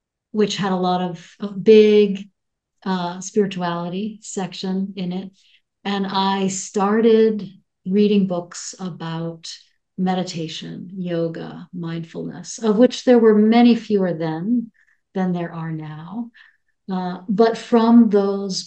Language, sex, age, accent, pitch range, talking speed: English, female, 50-69, American, 170-210 Hz, 115 wpm